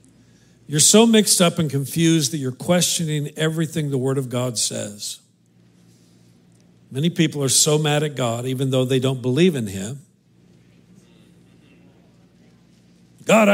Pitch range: 115-165 Hz